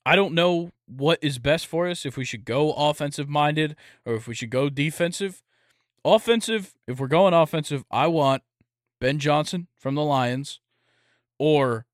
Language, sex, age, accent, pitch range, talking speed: English, male, 20-39, American, 115-145 Hz, 160 wpm